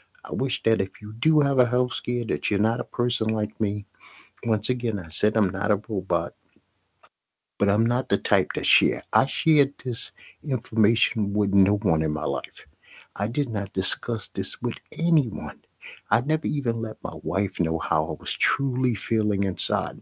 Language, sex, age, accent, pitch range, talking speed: English, male, 60-79, American, 105-140 Hz, 185 wpm